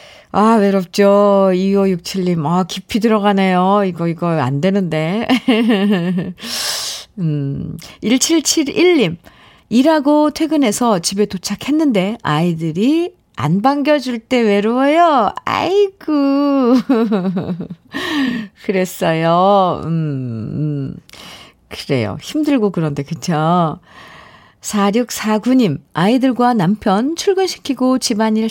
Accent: native